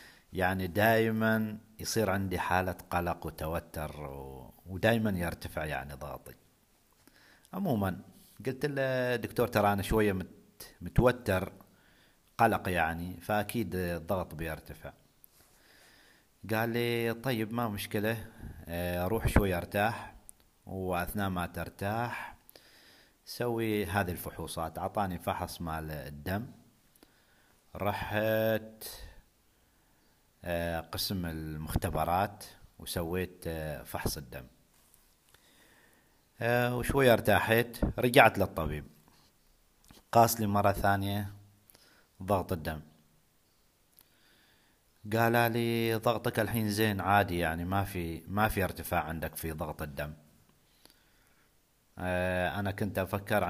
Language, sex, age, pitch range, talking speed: Arabic, male, 50-69, 85-110 Hz, 85 wpm